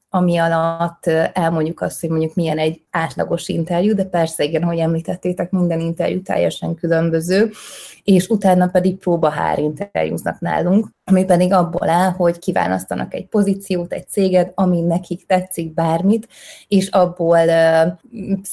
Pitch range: 165-185 Hz